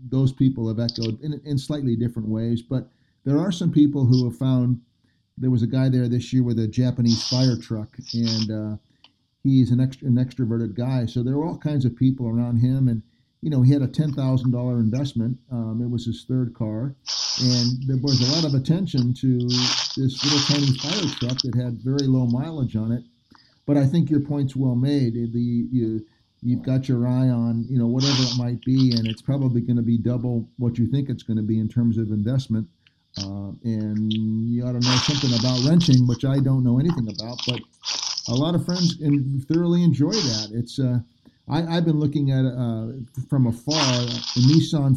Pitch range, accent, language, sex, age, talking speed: 115-135 Hz, American, English, male, 50-69, 205 wpm